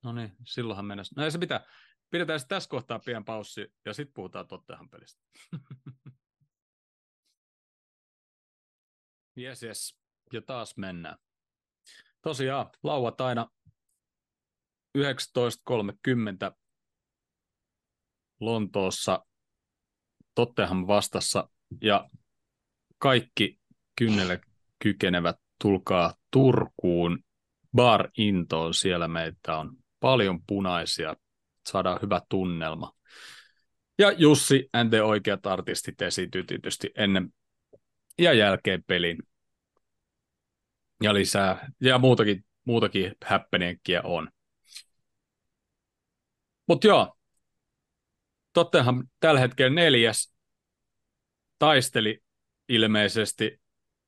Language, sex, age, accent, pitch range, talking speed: Finnish, male, 30-49, native, 95-125 Hz, 75 wpm